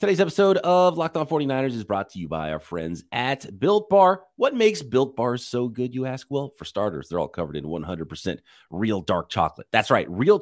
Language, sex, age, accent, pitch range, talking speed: English, male, 30-49, American, 95-140 Hz, 220 wpm